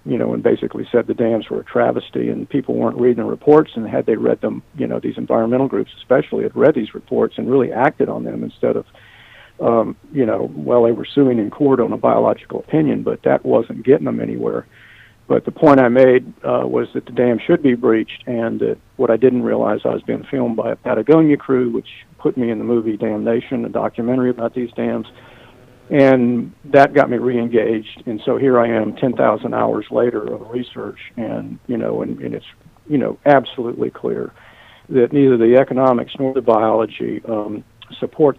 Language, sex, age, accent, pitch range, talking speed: English, male, 50-69, American, 115-130 Hz, 205 wpm